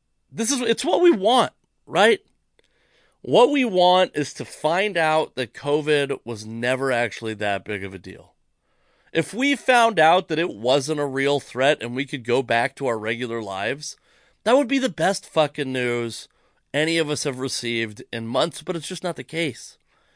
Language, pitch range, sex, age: English, 120-165 Hz, male, 30-49